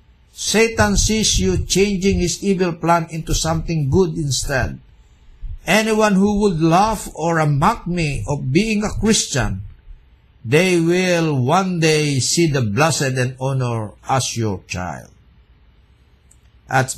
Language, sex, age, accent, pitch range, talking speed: Filipino, male, 60-79, native, 110-180 Hz, 125 wpm